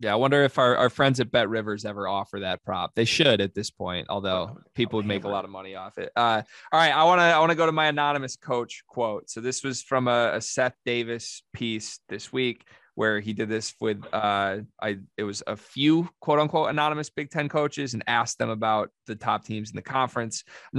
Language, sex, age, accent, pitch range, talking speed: English, male, 20-39, American, 110-140 Hz, 230 wpm